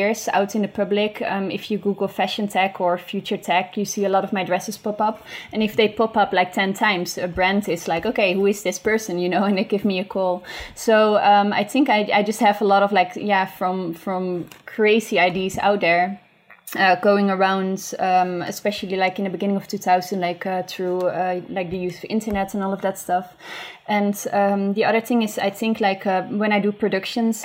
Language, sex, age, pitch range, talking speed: English, female, 20-39, 185-215 Hz, 230 wpm